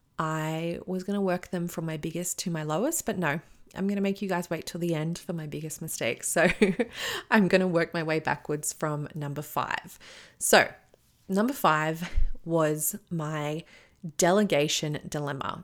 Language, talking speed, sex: English, 175 wpm, female